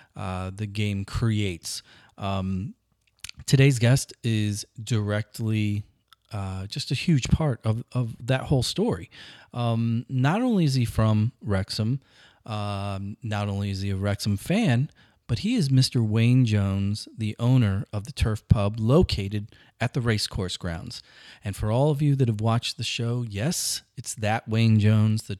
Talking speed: 155 wpm